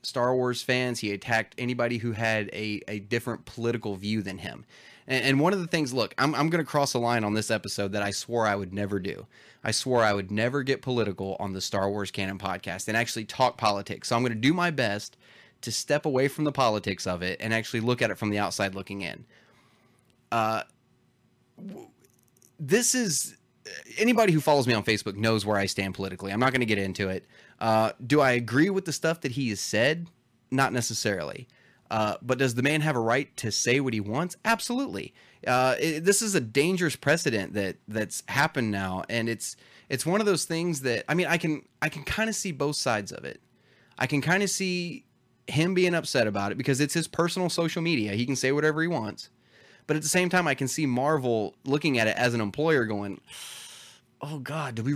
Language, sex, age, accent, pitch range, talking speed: English, male, 30-49, American, 110-150 Hz, 220 wpm